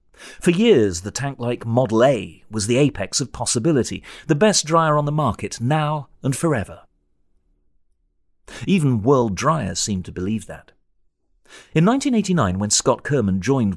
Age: 40-59